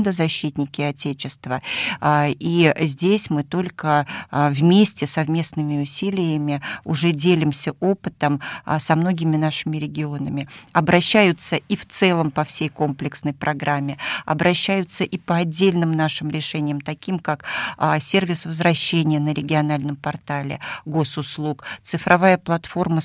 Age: 40-59